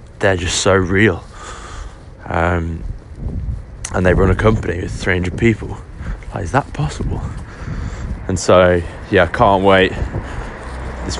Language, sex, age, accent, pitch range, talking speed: English, male, 20-39, British, 85-95 Hz, 130 wpm